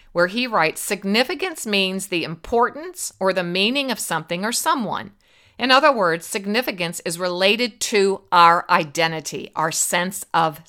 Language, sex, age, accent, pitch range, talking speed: English, female, 50-69, American, 170-255 Hz, 145 wpm